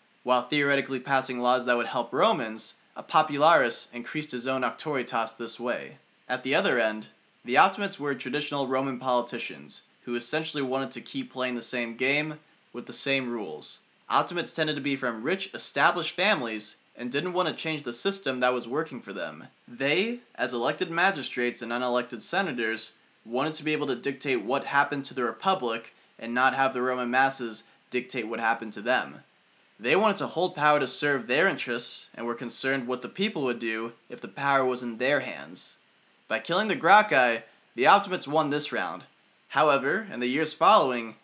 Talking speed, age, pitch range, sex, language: 185 wpm, 20-39, 120-145 Hz, male, English